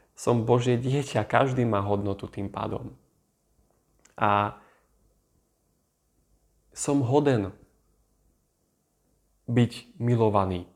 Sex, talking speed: male, 75 wpm